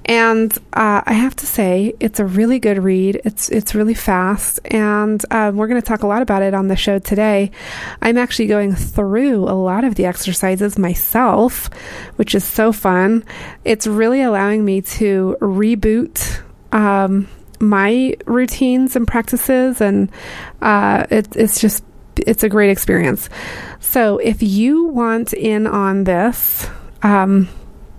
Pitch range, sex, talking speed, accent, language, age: 200-230 Hz, female, 150 wpm, American, English, 30-49